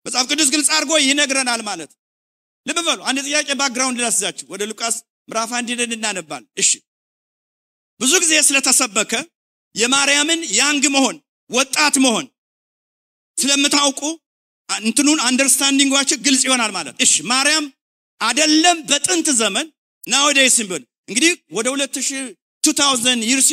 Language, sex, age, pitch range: English, male, 50-69, 260-310 Hz